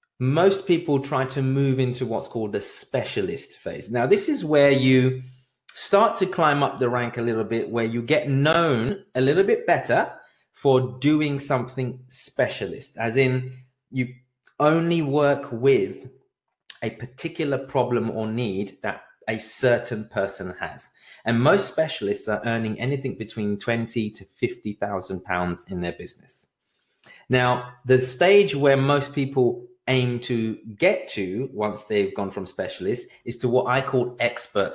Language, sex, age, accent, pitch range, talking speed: English, male, 20-39, British, 120-150 Hz, 150 wpm